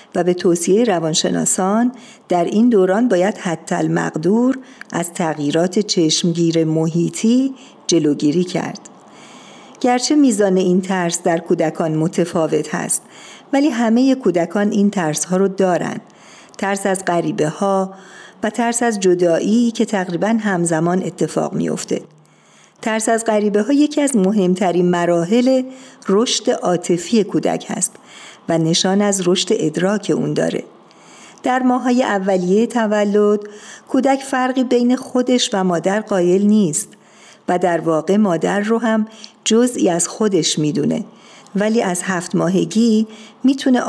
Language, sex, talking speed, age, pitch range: Persian, female, 125 wpm, 50-69, 175-225 Hz